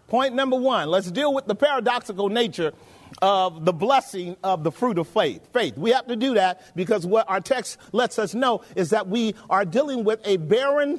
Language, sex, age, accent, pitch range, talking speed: English, male, 40-59, American, 185-250 Hz, 205 wpm